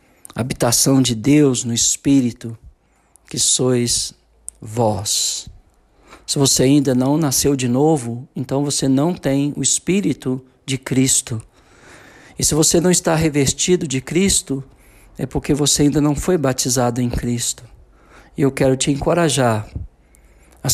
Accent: Brazilian